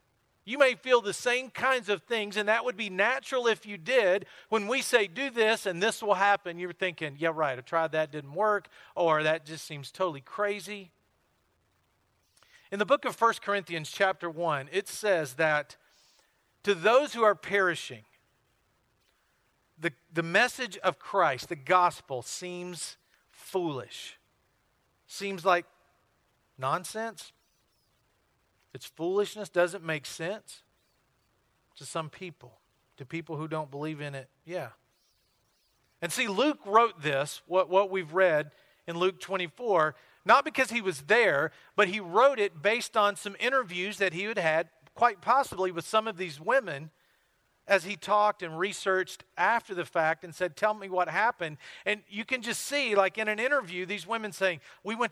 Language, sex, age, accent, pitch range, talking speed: English, male, 40-59, American, 160-220 Hz, 160 wpm